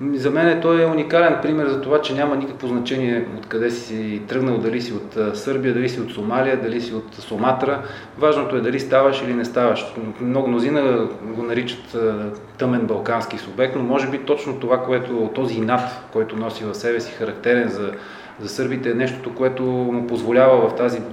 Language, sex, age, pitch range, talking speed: Bulgarian, male, 30-49, 115-130 Hz, 185 wpm